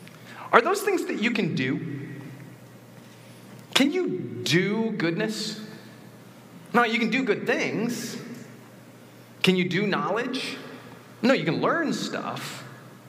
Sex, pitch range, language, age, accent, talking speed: male, 155-220 Hz, English, 30-49, American, 120 wpm